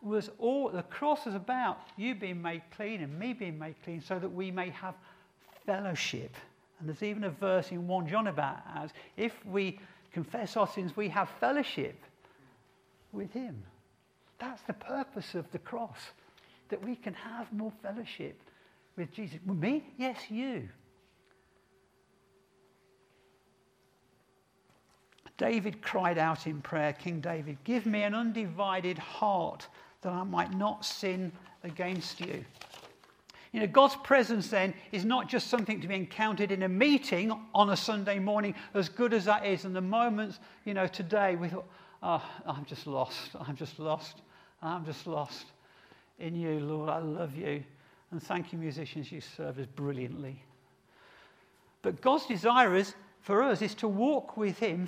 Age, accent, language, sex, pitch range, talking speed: 50-69, British, English, male, 170-220 Hz, 160 wpm